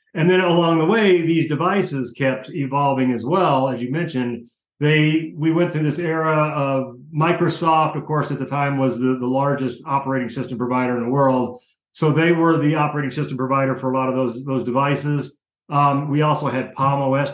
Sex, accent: male, American